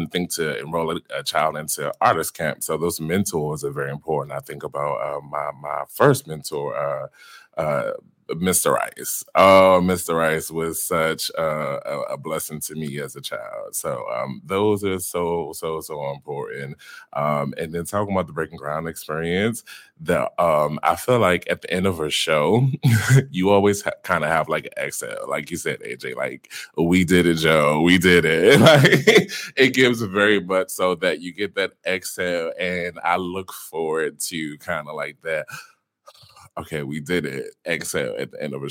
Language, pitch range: English, 80-105 Hz